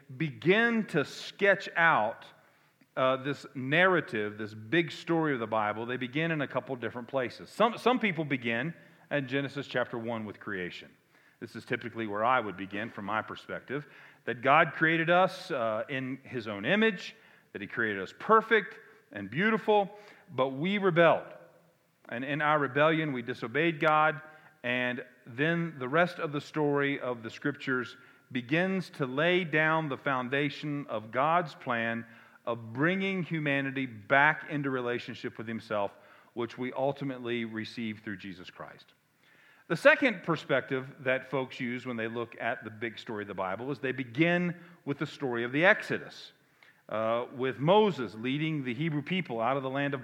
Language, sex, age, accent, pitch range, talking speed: English, male, 40-59, American, 120-165 Hz, 165 wpm